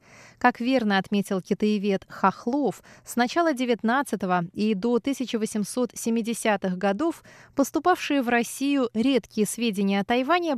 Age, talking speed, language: 20-39, 110 wpm, Russian